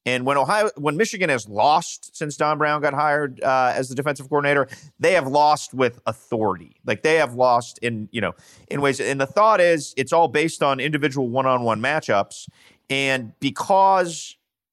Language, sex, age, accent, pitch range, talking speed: English, male, 30-49, American, 120-150 Hz, 185 wpm